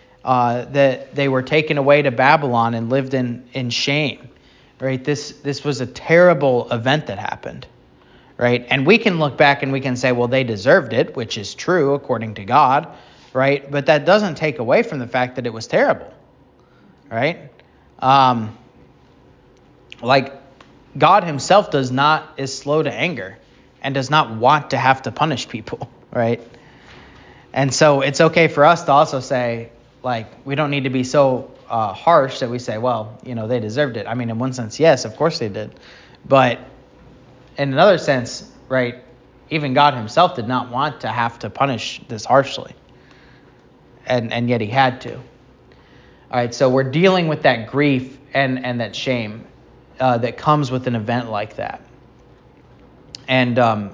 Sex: male